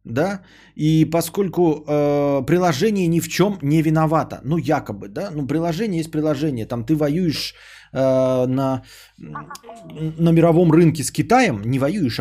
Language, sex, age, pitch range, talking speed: Bulgarian, male, 20-39, 130-180 Hz, 145 wpm